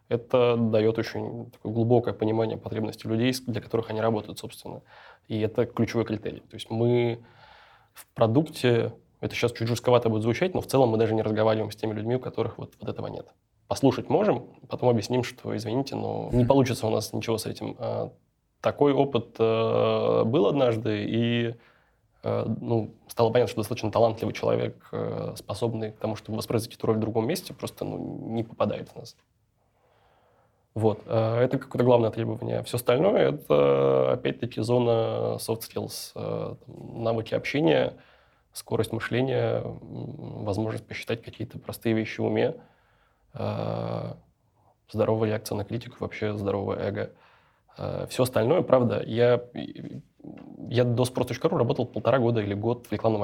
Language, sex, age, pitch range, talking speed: Russian, male, 20-39, 110-120 Hz, 145 wpm